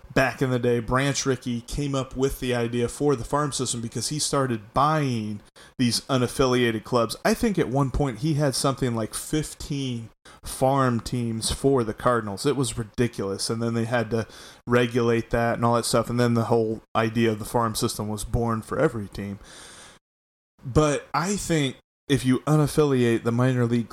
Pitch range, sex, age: 115-140 Hz, male, 20-39